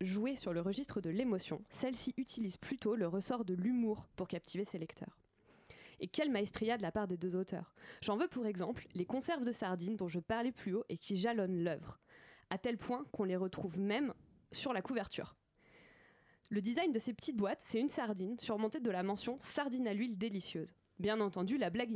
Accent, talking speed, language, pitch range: French, 210 wpm, French, 190-240 Hz